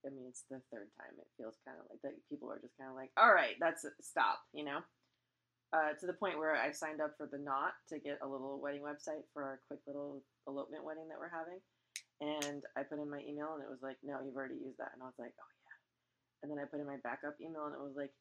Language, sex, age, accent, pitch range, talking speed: English, female, 20-39, American, 135-165 Hz, 275 wpm